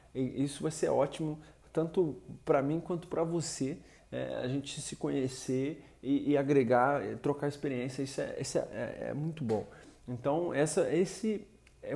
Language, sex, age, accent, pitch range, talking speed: Portuguese, male, 20-39, Brazilian, 130-155 Hz, 140 wpm